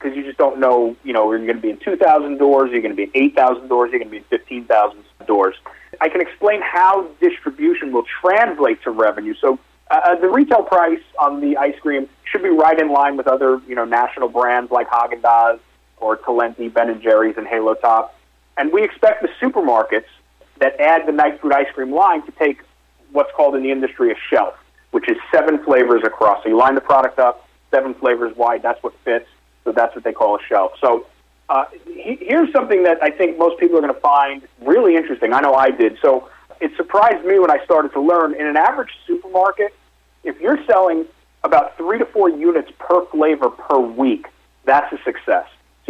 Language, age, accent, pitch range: English, 30-49, American, 130-210 Hz